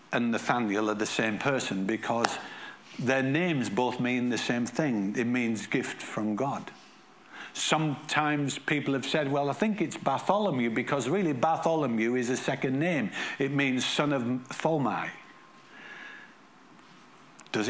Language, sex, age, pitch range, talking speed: English, male, 60-79, 115-150 Hz, 140 wpm